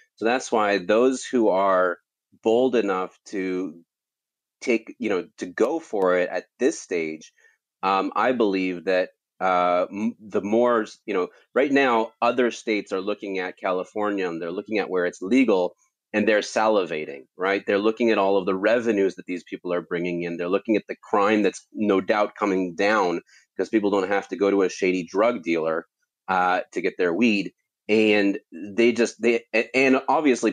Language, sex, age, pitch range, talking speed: English, male, 30-49, 90-115 Hz, 180 wpm